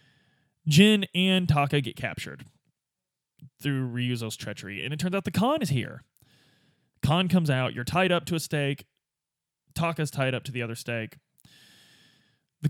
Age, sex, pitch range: 20-39, male, 125-150 Hz